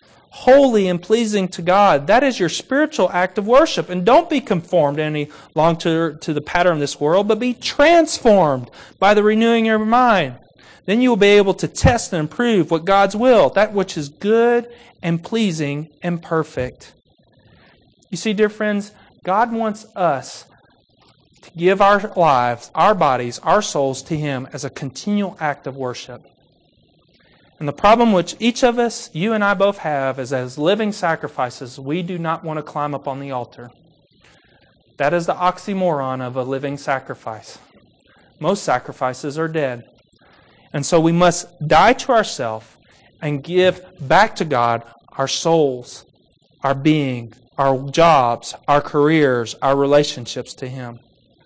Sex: male